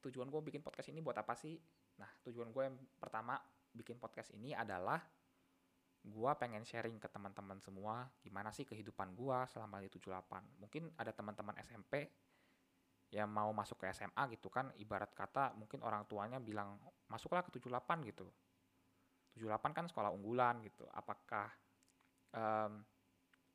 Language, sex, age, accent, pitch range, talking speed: Indonesian, male, 20-39, native, 95-125 Hz, 150 wpm